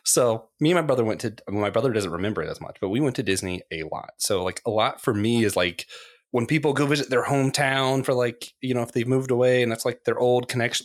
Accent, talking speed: American, 270 wpm